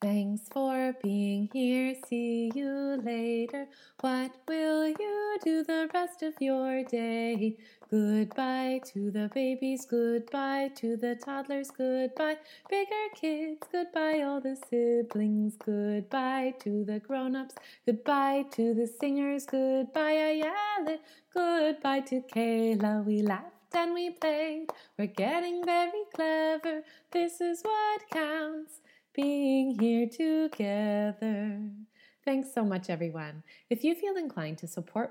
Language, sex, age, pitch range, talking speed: English, female, 20-39, 200-280 Hz, 120 wpm